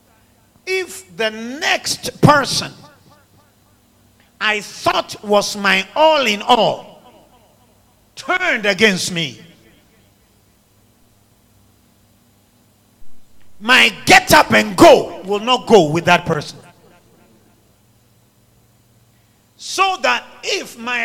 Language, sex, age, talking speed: English, male, 50-69, 85 wpm